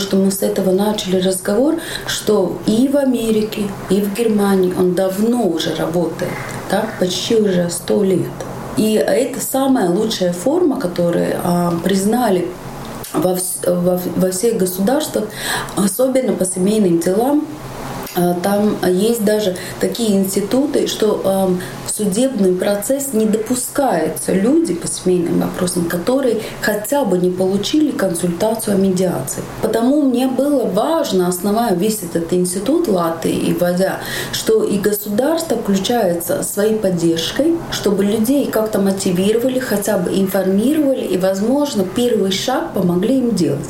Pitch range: 180-235 Hz